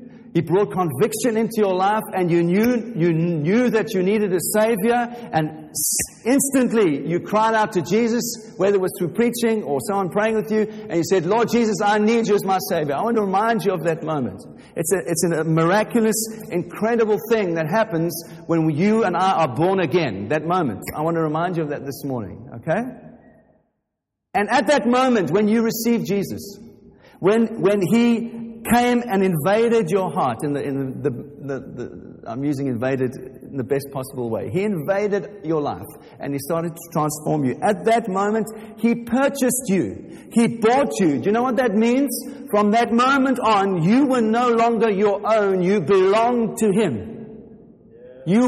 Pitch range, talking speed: 170-230 Hz, 185 wpm